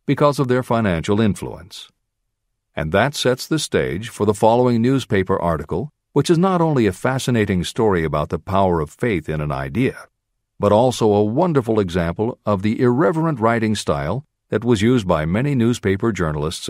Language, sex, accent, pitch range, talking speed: English, male, American, 100-125 Hz, 170 wpm